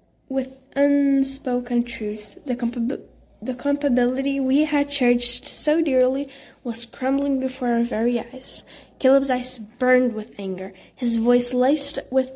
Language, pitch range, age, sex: English, 235-275 Hz, 10-29, female